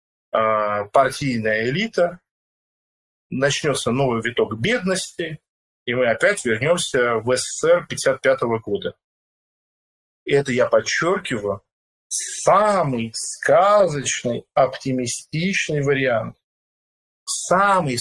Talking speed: 75 wpm